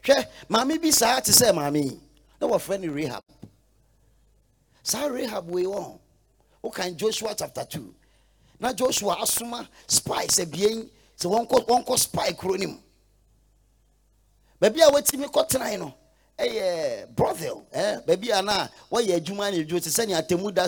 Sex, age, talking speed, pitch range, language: male, 40-59, 140 wpm, 170-255 Hz, English